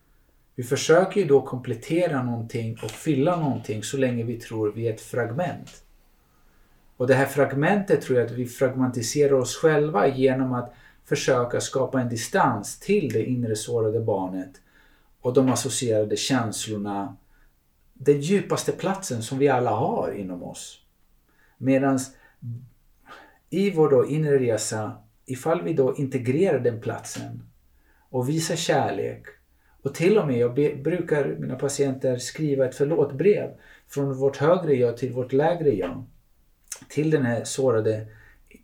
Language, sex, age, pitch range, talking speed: Swedish, male, 50-69, 115-145 Hz, 140 wpm